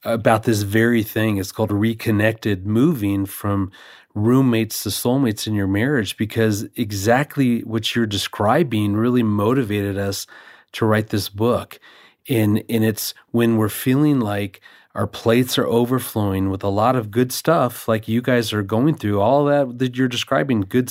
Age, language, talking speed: 30-49, English, 160 wpm